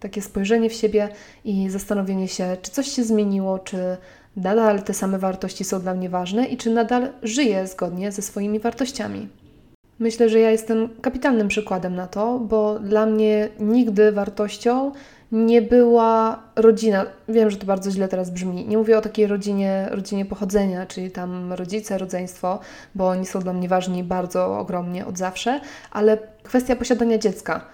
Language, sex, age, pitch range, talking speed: Polish, female, 20-39, 190-230 Hz, 165 wpm